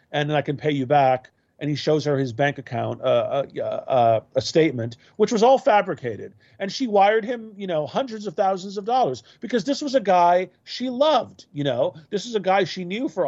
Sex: male